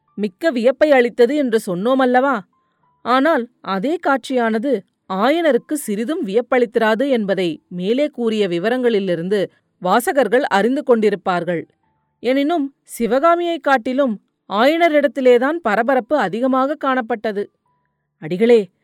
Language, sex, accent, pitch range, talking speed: Tamil, female, native, 200-265 Hz, 80 wpm